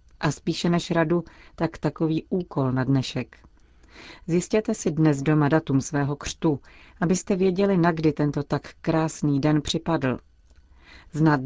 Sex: female